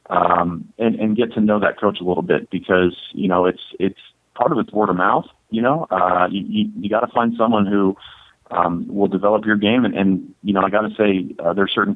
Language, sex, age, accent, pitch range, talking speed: English, male, 30-49, American, 90-105 Hz, 250 wpm